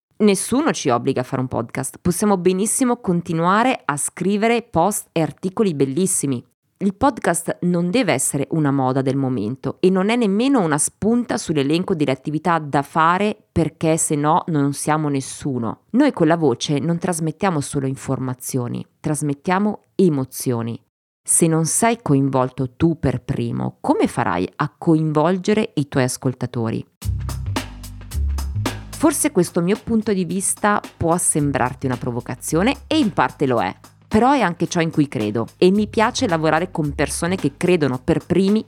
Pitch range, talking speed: 130-185 Hz, 150 wpm